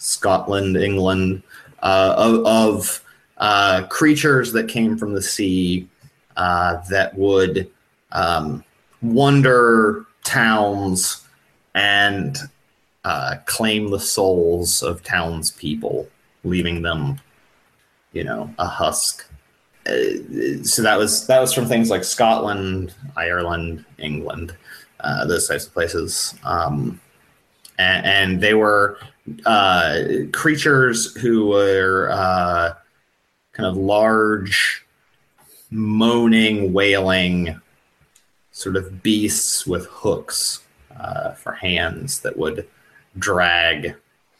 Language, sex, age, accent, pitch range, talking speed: English, male, 30-49, American, 90-110 Hz, 100 wpm